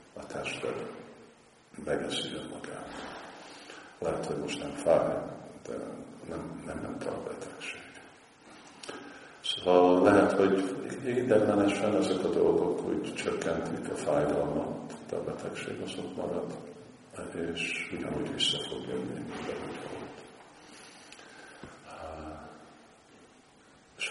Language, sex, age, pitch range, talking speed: Hungarian, male, 50-69, 80-90 Hz, 100 wpm